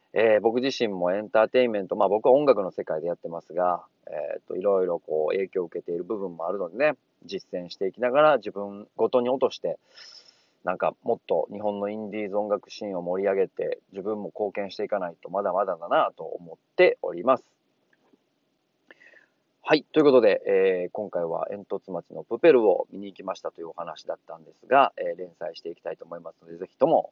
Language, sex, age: Japanese, male, 40-59